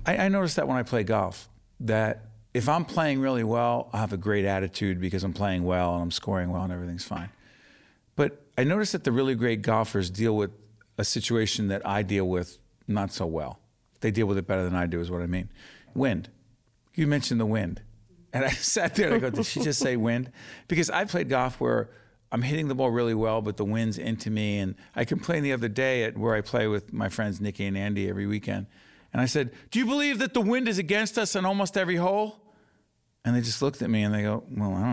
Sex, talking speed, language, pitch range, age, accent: male, 240 wpm, English, 105-145 Hz, 50-69, American